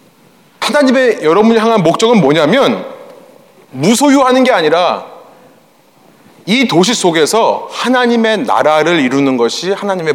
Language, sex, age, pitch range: Korean, male, 30-49, 180-245 Hz